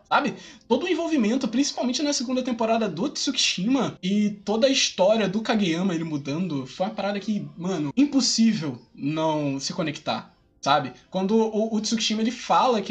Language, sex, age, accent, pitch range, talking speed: Portuguese, male, 20-39, Brazilian, 170-240 Hz, 160 wpm